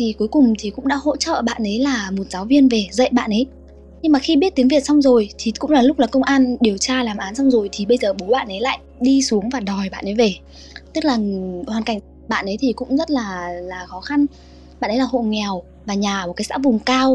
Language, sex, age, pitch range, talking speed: Vietnamese, female, 10-29, 210-270 Hz, 275 wpm